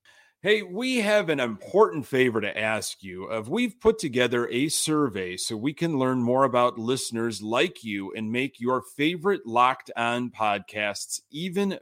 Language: English